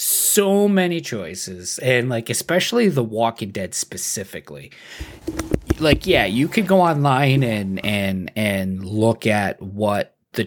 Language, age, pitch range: English, 30-49, 95-120 Hz